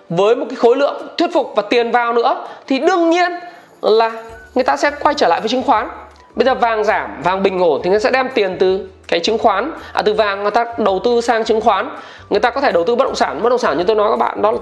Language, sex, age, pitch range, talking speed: Vietnamese, male, 20-39, 225-285 Hz, 285 wpm